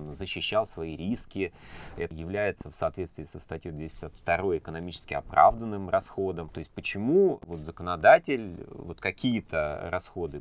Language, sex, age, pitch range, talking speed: Russian, male, 30-49, 80-105 Hz, 120 wpm